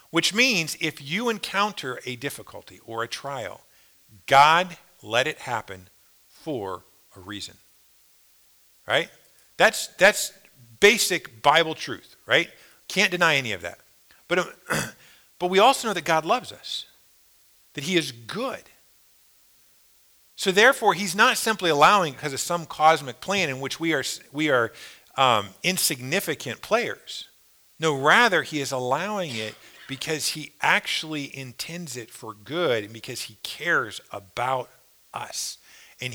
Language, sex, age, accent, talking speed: English, male, 50-69, American, 135 wpm